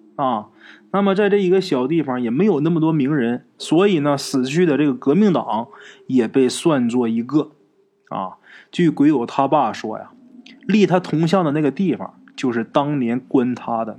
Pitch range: 115-170 Hz